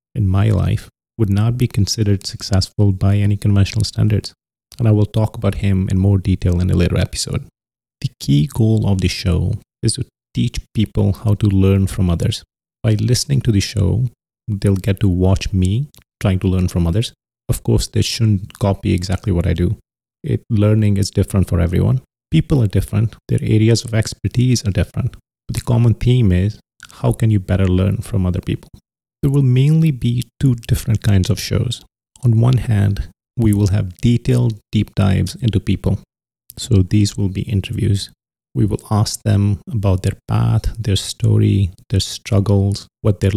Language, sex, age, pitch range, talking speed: English, male, 30-49, 95-115 Hz, 180 wpm